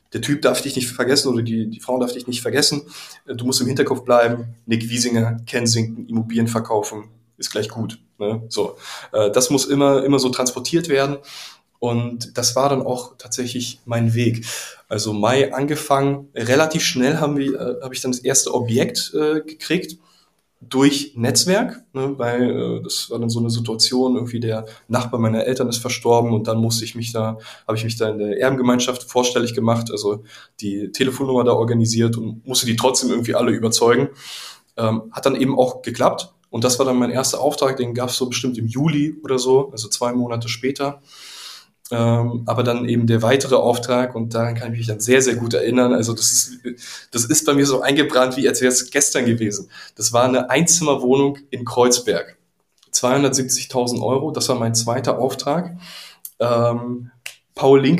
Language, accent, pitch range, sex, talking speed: German, German, 115-135 Hz, male, 180 wpm